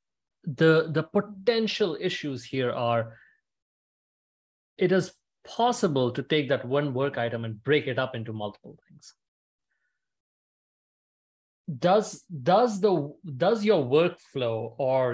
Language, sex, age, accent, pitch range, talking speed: English, male, 30-49, Indian, 120-170 Hz, 115 wpm